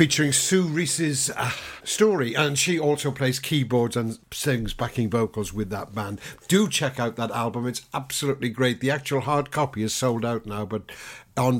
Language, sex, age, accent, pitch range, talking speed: English, male, 60-79, British, 115-140 Hz, 180 wpm